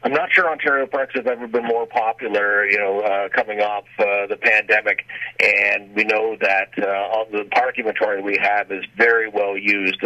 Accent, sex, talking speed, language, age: American, male, 195 wpm, English, 40-59